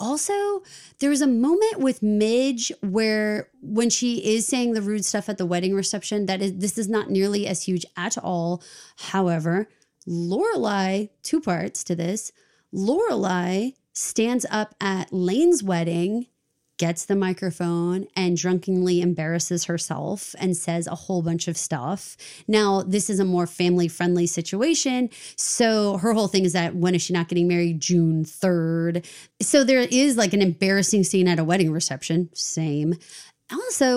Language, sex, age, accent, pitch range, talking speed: English, female, 30-49, American, 175-220 Hz, 155 wpm